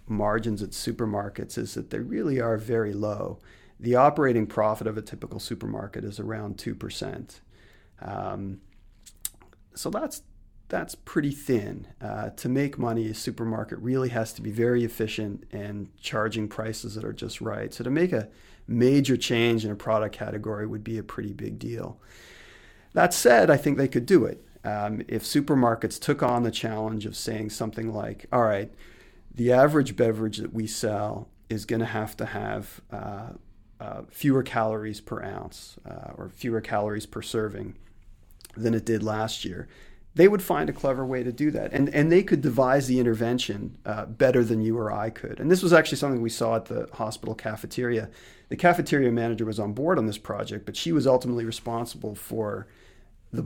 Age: 40-59